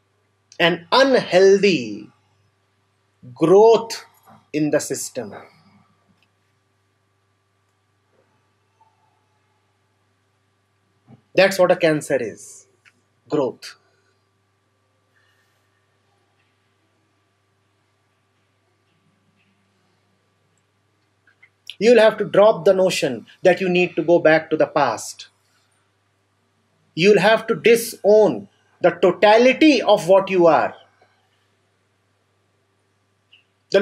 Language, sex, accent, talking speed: English, male, Indian, 65 wpm